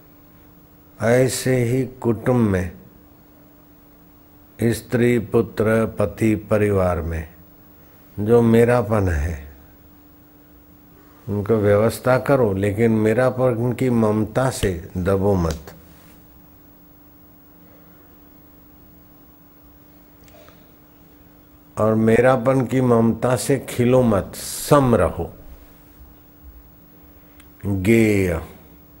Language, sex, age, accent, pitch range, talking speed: Hindi, male, 60-79, native, 95-115 Hz, 65 wpm